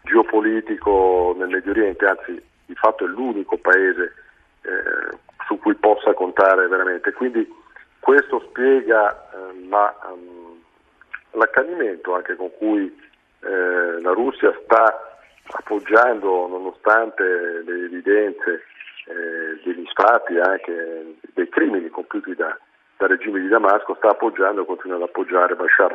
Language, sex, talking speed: Italian, male, 125 wpm